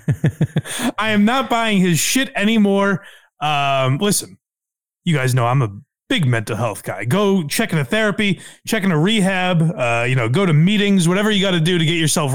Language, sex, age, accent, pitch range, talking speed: English, male, 30-49, American, 145-200 Hz, 195 wpm